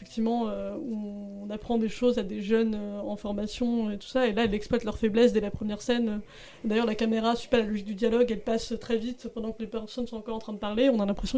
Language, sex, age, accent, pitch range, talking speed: French, female, 20-39, French, 215-235 Hz, 275 wpm